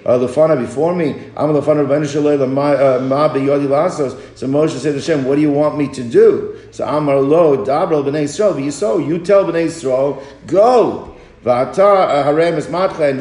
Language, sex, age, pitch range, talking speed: English, male, 50-69, 130-160 Hz, 140 wpm